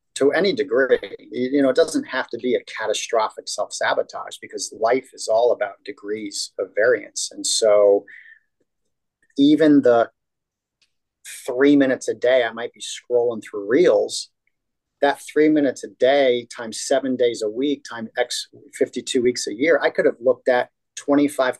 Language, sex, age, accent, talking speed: English, male, 40-59, American, 160 wpm